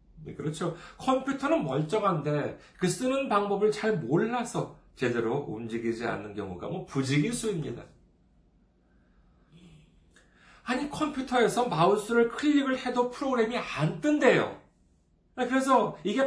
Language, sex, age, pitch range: Korean, male, 40-59, 155-250 Hz